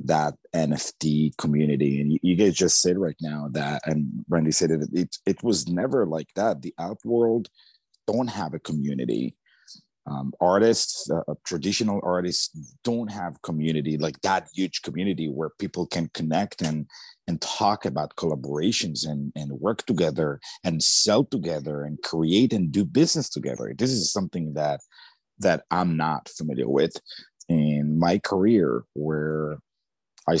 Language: English